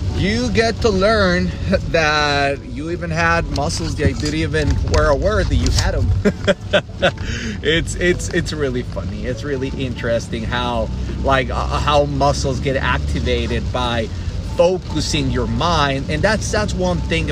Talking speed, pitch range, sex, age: 150 wpm, 90-140 Hz, male, 30-49